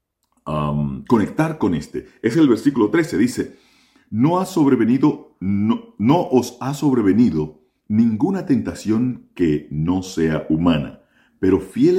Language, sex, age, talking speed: Spanish, male, 40-59, 125 wpm